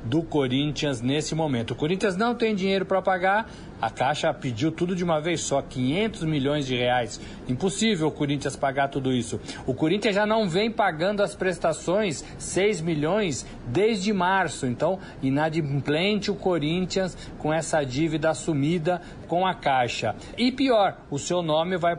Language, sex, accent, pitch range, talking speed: Portuguese, male, Brazilian, 140-190 Hz, 160 wpm